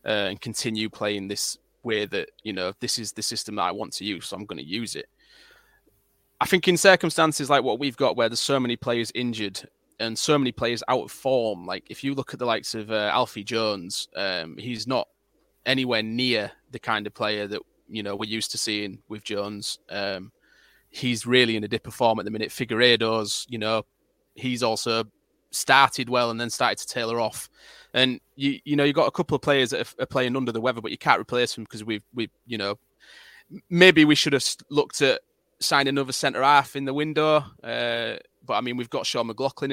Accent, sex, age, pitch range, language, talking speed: British, male, 20-39, 110-135 Hz, English, 215 wpm